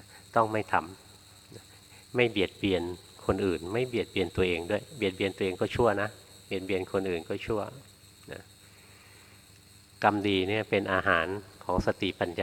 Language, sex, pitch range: Thai, male, 95-105 Hz